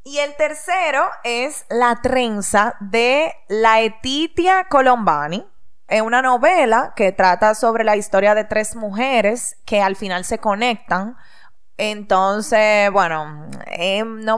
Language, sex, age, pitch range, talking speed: Spanish, female, 20-39, 190-245 Hz, 125 wpm